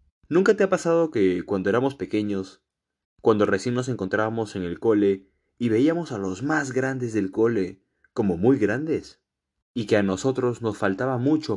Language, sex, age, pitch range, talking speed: Spanish, male, 20-39, 95-115 Hz, 170 wpm